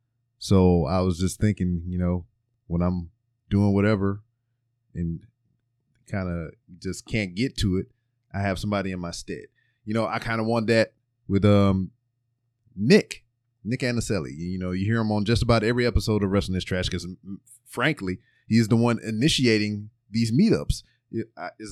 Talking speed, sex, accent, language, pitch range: 170 wpm, male, American, English, 95-120 Hz